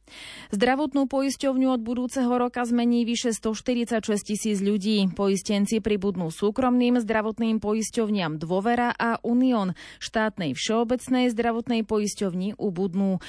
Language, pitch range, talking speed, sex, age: Slovak, 200-245 Hz, 105 wpm, female, 30-49